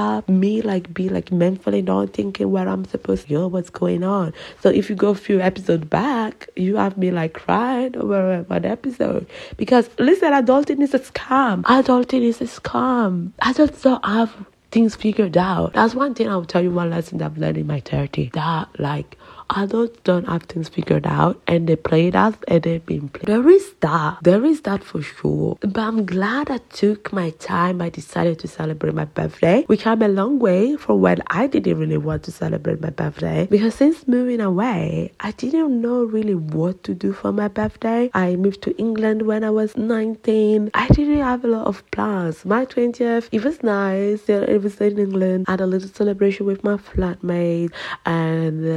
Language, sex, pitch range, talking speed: English, female, 170-230 Hz, 200 wpm